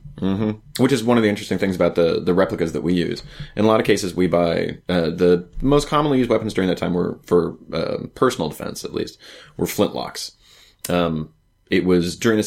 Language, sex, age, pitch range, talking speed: English, male, 30-49, 85-105 Hz, 215 wpm